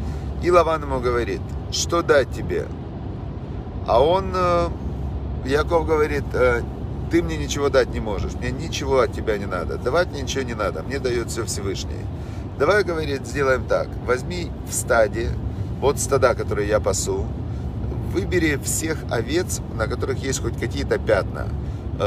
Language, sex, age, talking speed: Russian, male, 40-59, 145 wpm